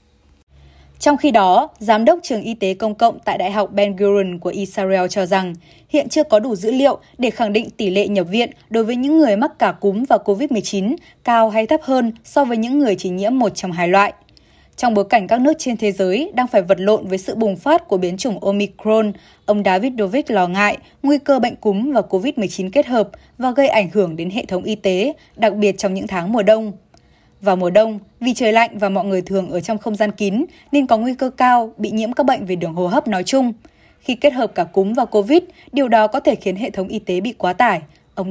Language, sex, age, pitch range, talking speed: Vietnamese, female, 20-39, 195-255 Hz, 240 wpm